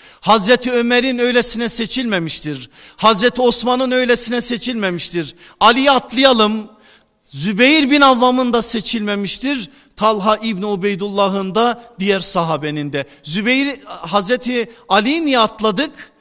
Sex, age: male, 50-69